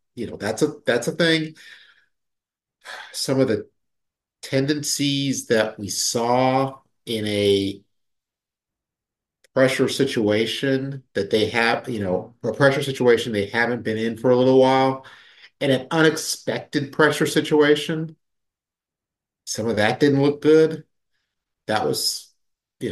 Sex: male